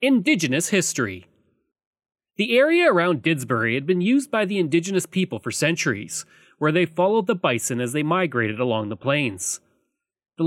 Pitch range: 135-220 Hz